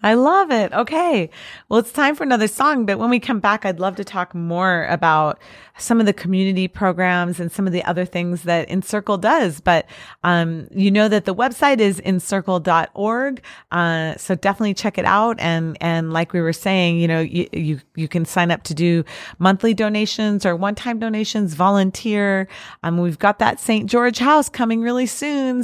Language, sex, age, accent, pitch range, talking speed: English, female, 30-49, American, 175-215 Hz, 190 wpm